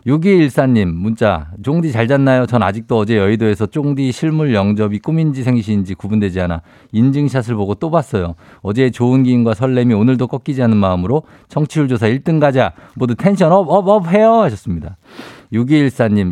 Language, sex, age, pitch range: Korean, male, 50-69, 105-145 Hz